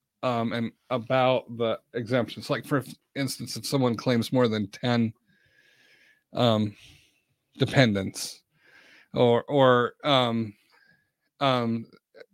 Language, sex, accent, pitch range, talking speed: English, male, American, 120-145 Hz, 95 wpm